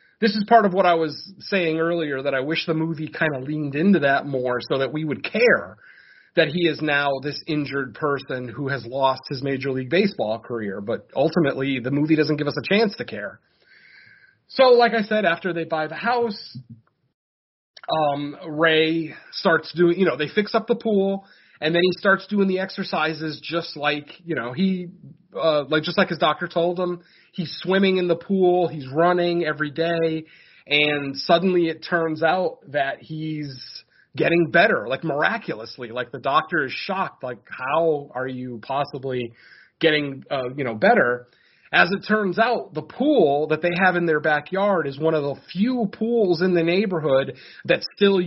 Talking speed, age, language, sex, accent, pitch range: 185 wpm, 30-49, English, male, American, 145-185 Hz